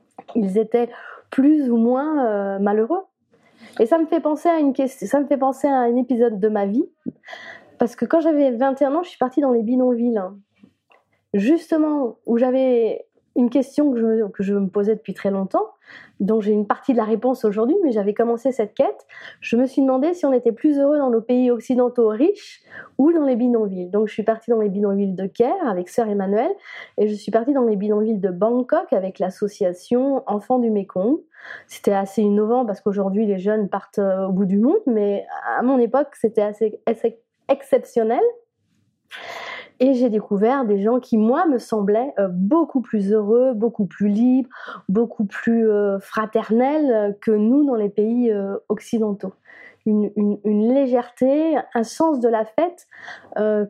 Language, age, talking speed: French, 20-39, 185 wpm